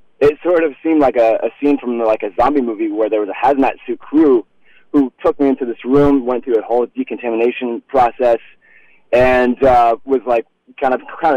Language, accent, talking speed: English, American, 210 wpm